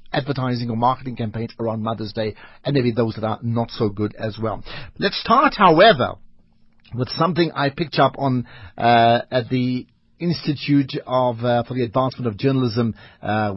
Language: English